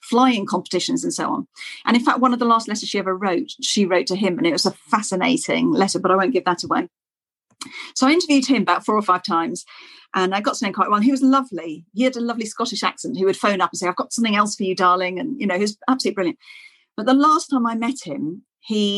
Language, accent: English, British